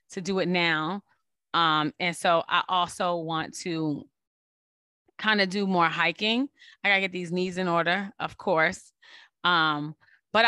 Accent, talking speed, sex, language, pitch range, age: American, 155 wpm, female, English, 165-215 Hz, 20-39